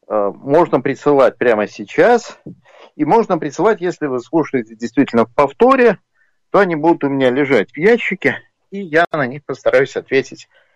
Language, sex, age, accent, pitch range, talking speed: Russian, male, 50-69, native, 120-175 Hz, 150 wpm